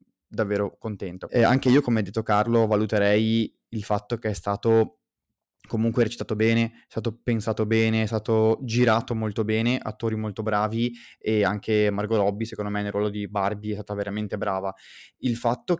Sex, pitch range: male, 110-125 Hz